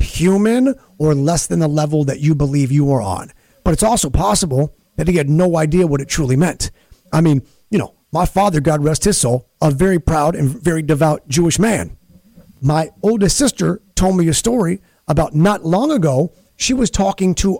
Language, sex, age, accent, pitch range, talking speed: English, male, 40-59, American, 150-205 Hz, 200 wpm